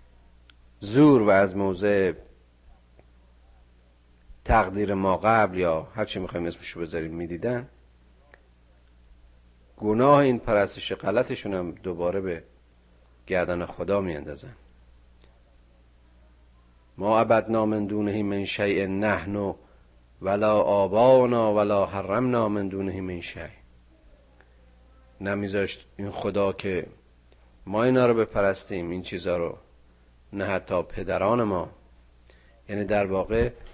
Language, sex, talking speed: Persian, male, 95 wpm